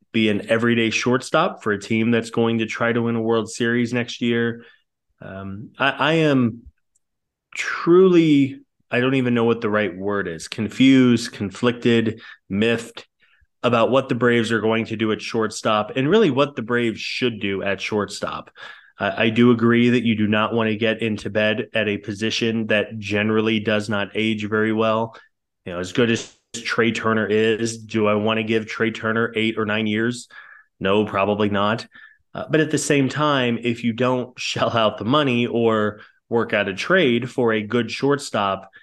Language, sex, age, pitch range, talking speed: English, male, 20-39, 110-125 Hz, 185 wpm